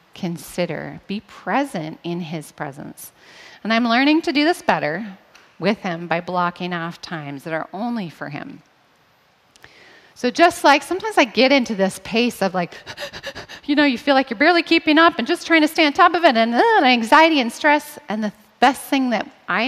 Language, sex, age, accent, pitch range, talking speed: English, female, 30-49, American, 180-290 Hz, 195 wpm